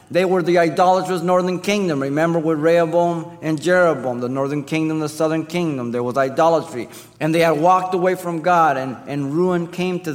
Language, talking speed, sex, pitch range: English, 190 wpm, male, 120-165 Hz